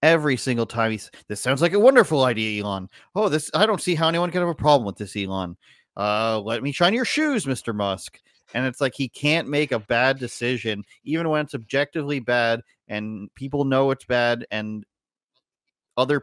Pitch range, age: 115-150 Hz, 30-49